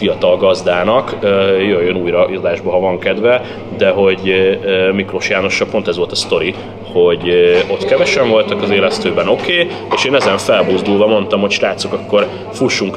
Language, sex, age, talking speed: Hungarian, male, 30-49, 155 wpm